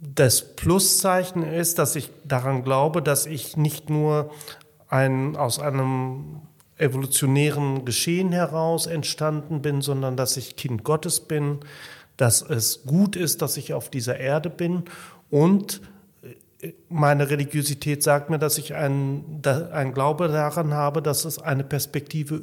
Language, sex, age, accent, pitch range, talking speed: German, male, 40-59, German, 135-170 Hz, 130 wpm